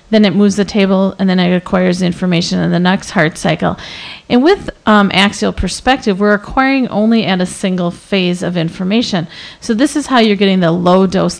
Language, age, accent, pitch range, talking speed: English, 40-59, American, 180-220 Hz, 195 wpm